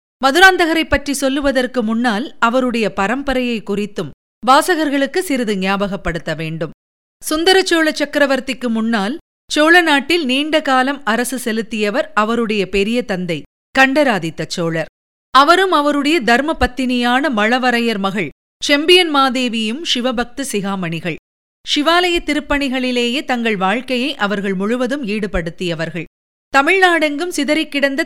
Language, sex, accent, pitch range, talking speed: Tamil, female, native, 210-290 Hz, 90 wpm